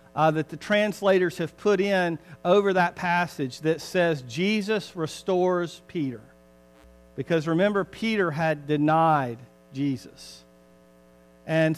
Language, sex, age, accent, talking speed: English, male, 50-69, American, 110 wpm